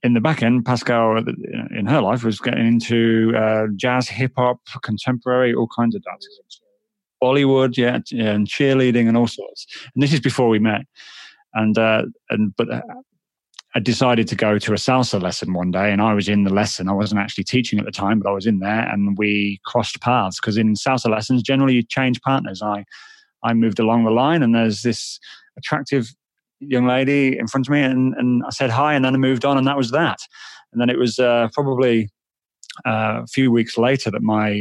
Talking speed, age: 210 wpm, 30-49